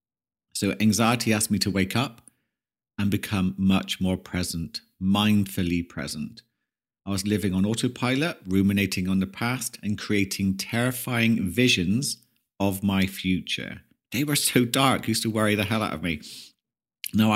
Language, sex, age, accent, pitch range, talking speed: English, male, 50-69, British, 95-125 Hz, 150 wpm